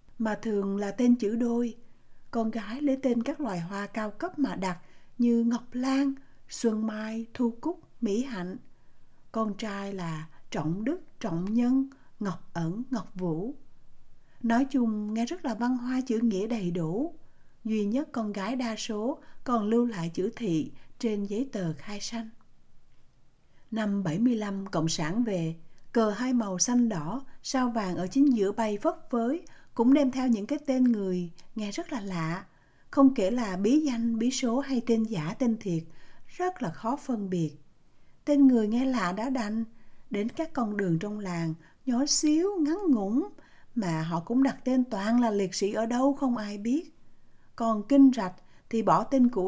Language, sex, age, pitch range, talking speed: Vietnamese, female, 60-79, 200-255 Hz, 180 wpm